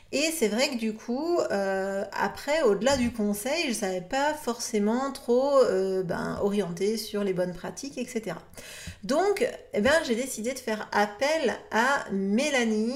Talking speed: 160 wpm